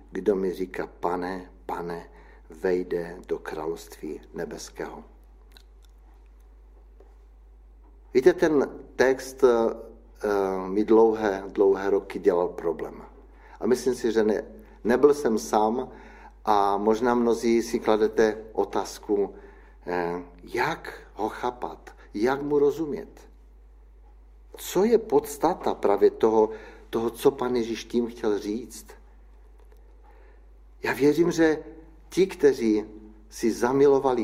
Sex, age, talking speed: male, 60-79, 100 wpm